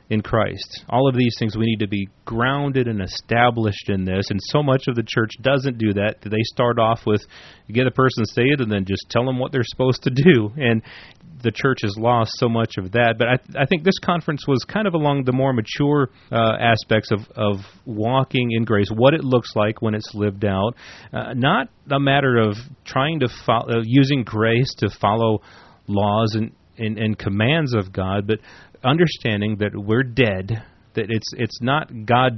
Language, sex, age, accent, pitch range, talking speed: English, male, 30-49, American, 105-125 Hz, 215 wpm